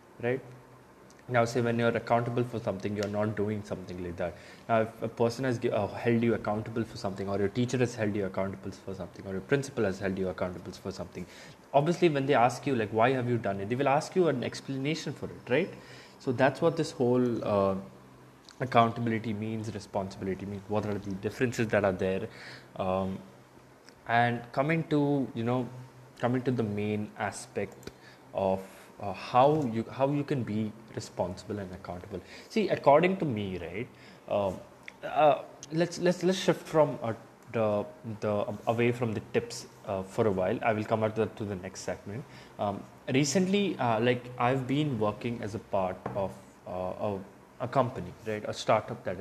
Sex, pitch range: male, 100-130 Hz